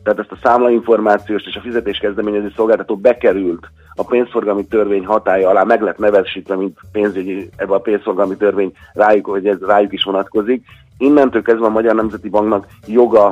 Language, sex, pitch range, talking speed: Hungarian, male, 95-110 Hz, 160 wpm